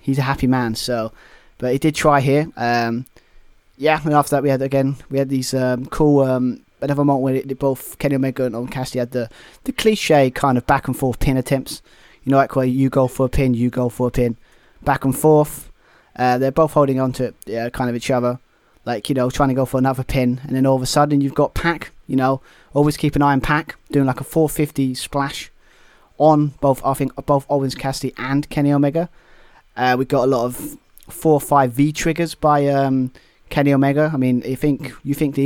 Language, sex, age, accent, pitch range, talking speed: English, male, 20-39, British, 125-145 Hz, 235 wpm